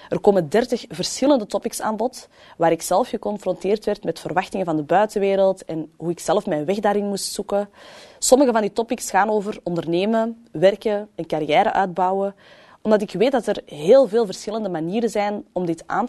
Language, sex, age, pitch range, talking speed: Dutch, female, 20-39, 165-215 Hz, 185 wpm